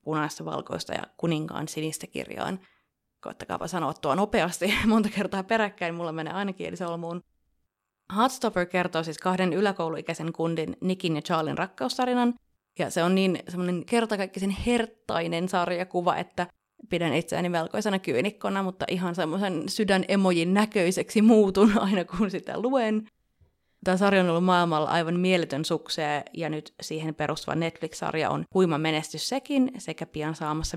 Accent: native